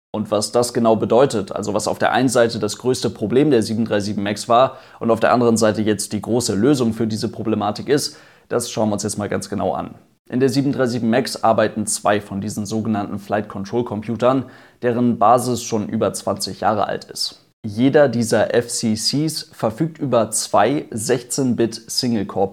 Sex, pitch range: male, 105-120 Hz